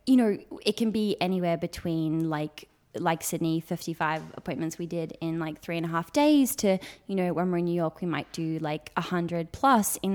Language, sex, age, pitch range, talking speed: English, female, 20-39, 165-190 Hz, 220 wpm